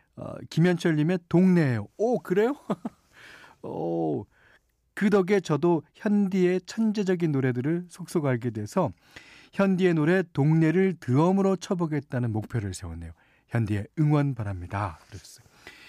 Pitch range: 120-180 Hz